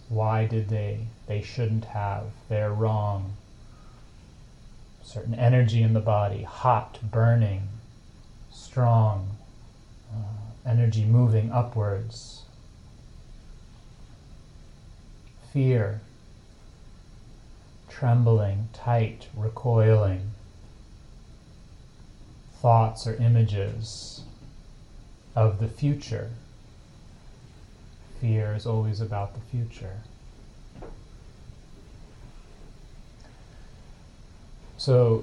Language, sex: English, male